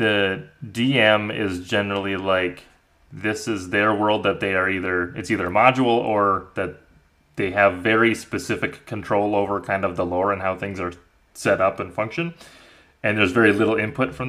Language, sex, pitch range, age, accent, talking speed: English, male, 100-125 Hz, 30-49, American, 180 wpm